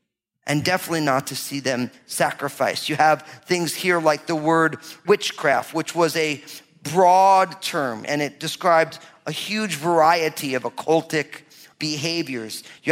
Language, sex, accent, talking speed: English, male, American, 140 wpm